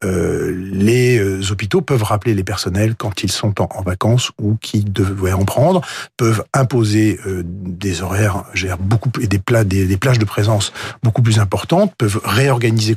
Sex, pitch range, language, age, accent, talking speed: male, 100-125 Hz, French, 40-59, French, 180 wpm